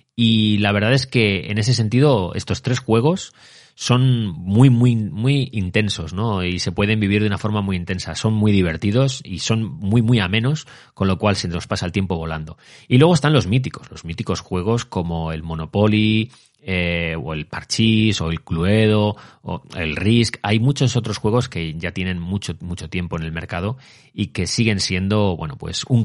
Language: Spanish